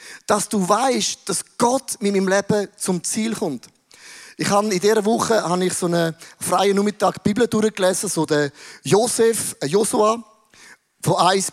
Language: German